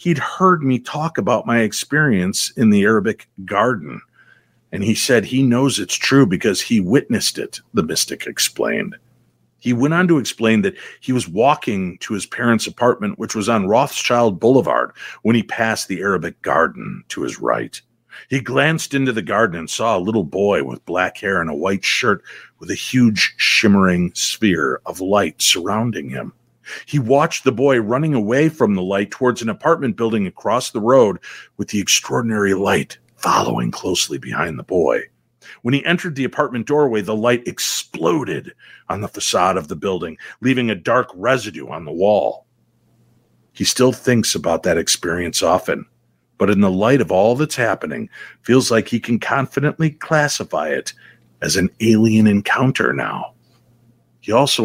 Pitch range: 100-135 Hz